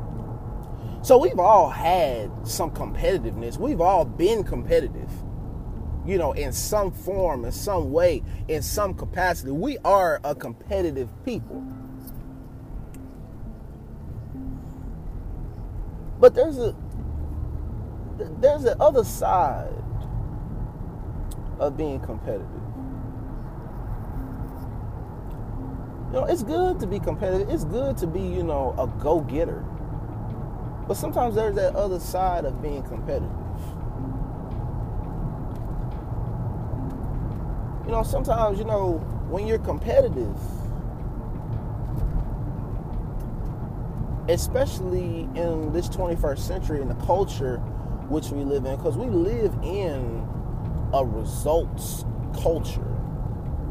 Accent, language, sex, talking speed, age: American, English, male, 100 wpm, 30-49